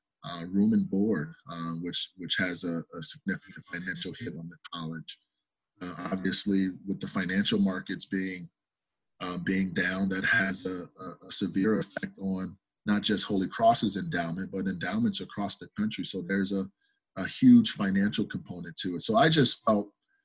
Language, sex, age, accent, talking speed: English, male, 30-49, American, 165 wpm